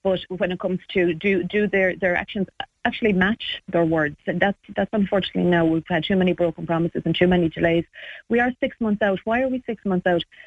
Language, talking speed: English, 230 wpm